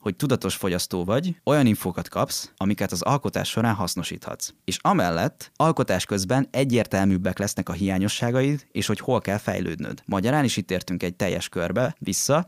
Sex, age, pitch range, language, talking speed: male, 20-39, 90-110 Hz, Hungarian, 160 wpm